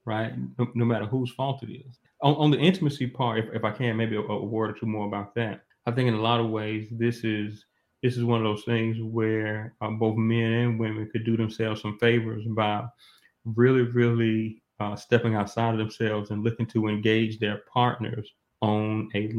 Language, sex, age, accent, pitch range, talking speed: English, male, 30-49, American, 110-120 Hz, 210 wpm